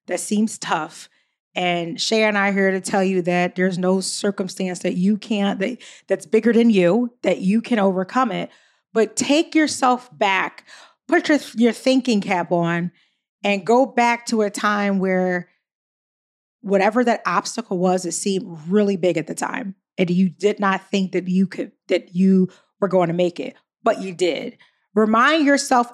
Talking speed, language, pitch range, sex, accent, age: 175 wpm, English, 190-235 Hz, female, American, 40-59